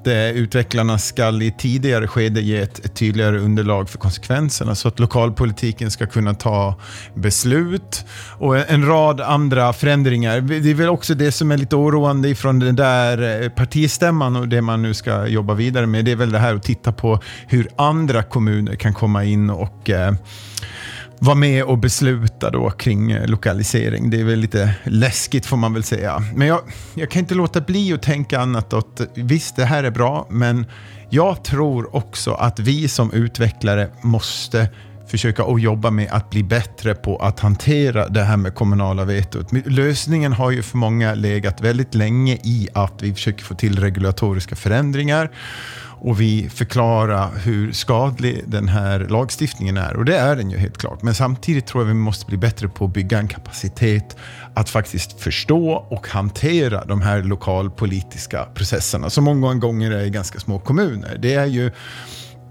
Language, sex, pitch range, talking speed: Swedish, male, 105-130 Hz, 180 wpm